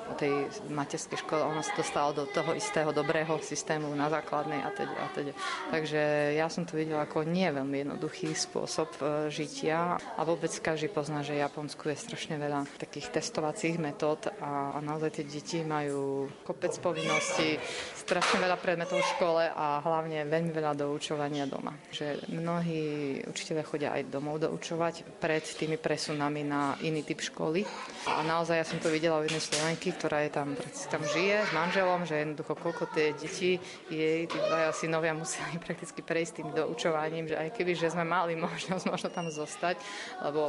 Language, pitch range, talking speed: Slovak, 150-170 Hz, 165 wpm